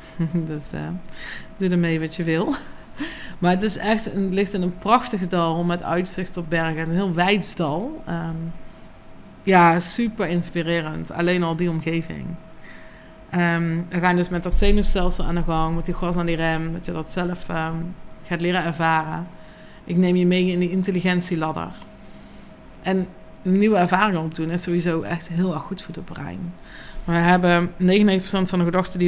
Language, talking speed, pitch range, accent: Dutch, 180 wpm, 170-190 Hz, Dutch